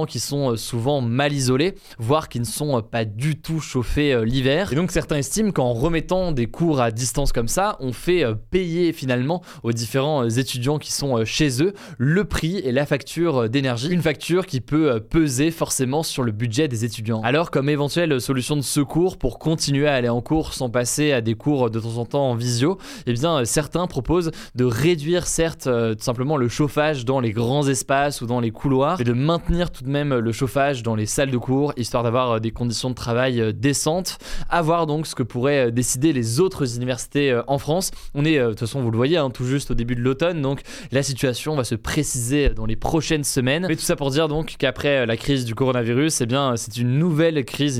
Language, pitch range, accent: French, 120-155 Hz, French